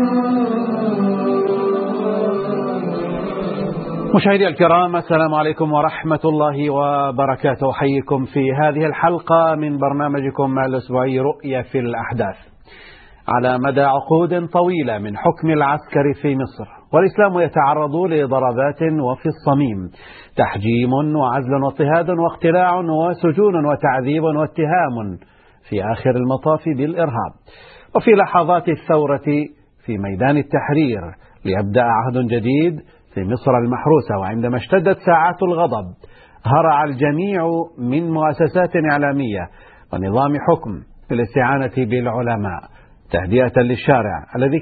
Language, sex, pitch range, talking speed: Arabic, male, 125-165 Hz, 95 wpm